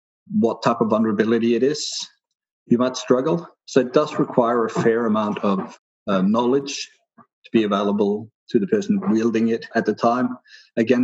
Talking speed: 170 wpm